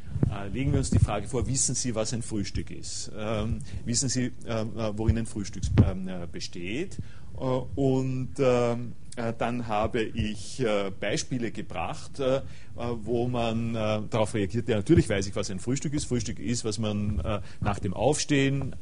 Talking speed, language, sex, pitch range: 170 wpm, German, male, 105-130 Hz